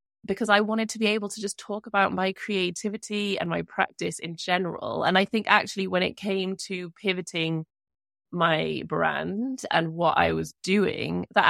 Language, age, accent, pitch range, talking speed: English, 20-39, British, 160-190 Hz, 175 wpm